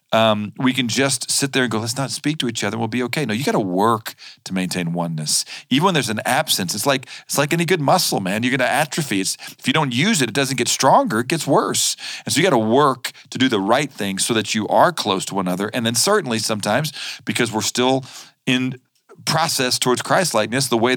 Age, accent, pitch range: 40-59, American, 95-125 Hz